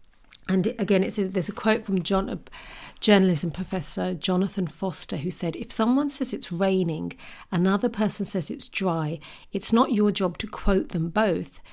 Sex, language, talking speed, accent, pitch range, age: female, English, 155 wpm, British, 175-200 Hz, 40-59